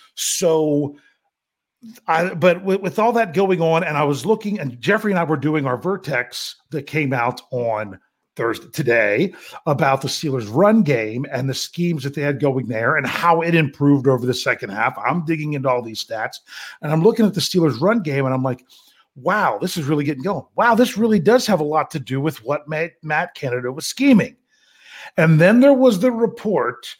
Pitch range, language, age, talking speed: 145-195 Hz, English, 40-59, 205 wpm